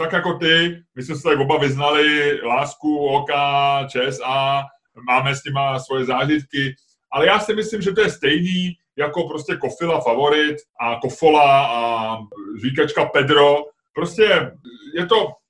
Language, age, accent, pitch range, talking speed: Czech, 30-49, native, 140-175 Hz, 145 wpm